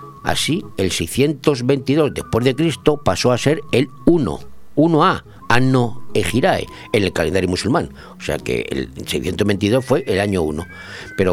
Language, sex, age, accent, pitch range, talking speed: Spanish, male, 60-79, Spanish, 105-150 Hz, 150 wpm